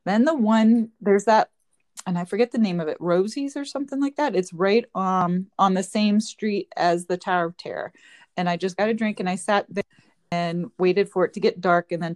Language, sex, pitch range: English, female, 175-220 Hz